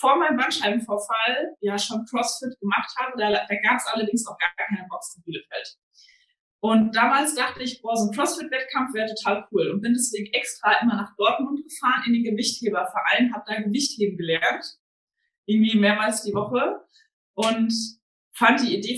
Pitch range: 205-235 Hz